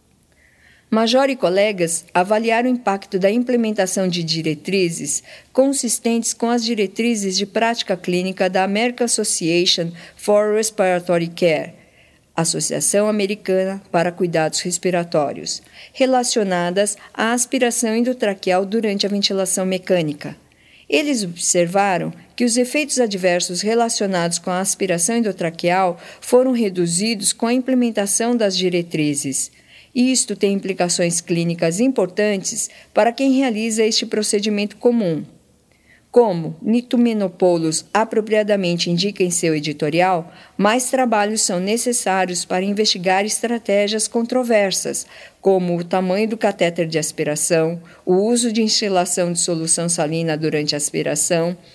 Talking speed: 110 wpm